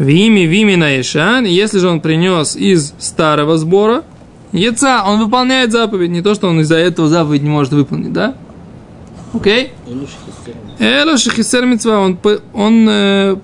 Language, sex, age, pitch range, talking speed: Russian, male, 20-39, 165-220 Hz, 105 wpm